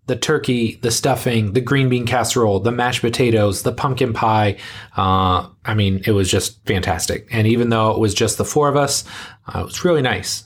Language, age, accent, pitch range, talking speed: English, 30-49, American, 105-125 Hz, 205 wpm